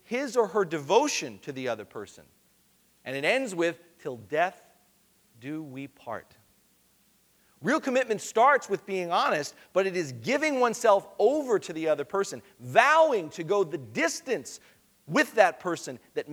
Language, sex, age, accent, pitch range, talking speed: English, male, 40-59, American, 130-195 Hz, 155 wpm